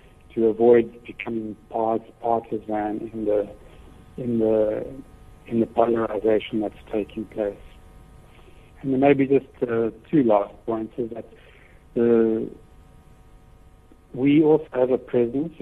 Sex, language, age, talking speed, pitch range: male, English, 70-89, 120 wpm, 105-120 Hz